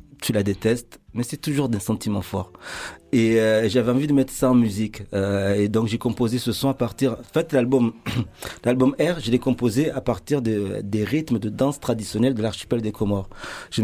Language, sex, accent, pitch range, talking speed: French, male, French, 105-130 Hz, 210 wpm